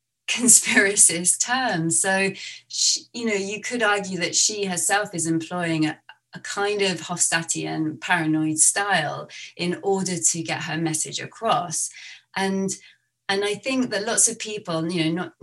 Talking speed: 150 wpm